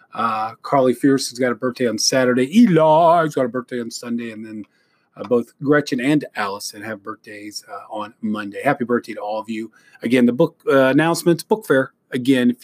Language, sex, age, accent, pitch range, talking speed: English, male, 40-59, American, 120-150 Hz, 200 wpm